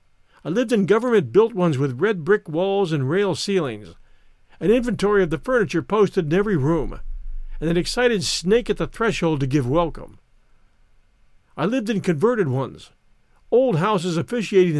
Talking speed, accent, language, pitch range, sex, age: 160 wpm, American, English, 155-215 Hz, male, 50-69